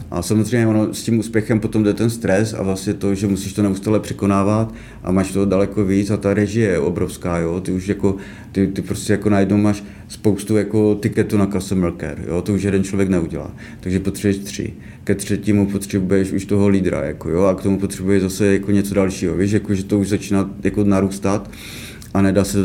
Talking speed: 210 wpm